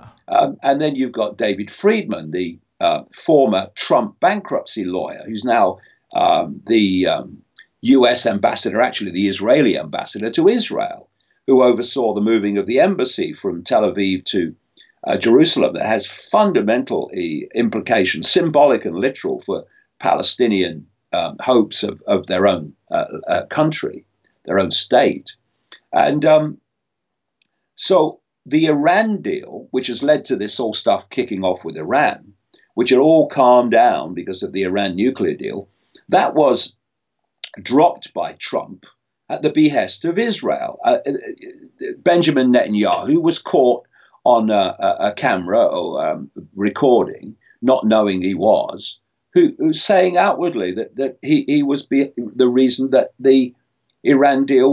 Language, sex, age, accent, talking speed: English, male, 50-69, British, 145 wpm